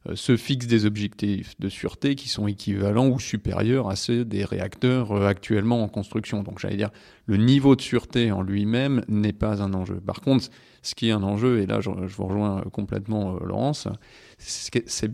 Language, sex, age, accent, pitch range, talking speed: French, male, 30-49, French, 100-125 Hz, 185 wpm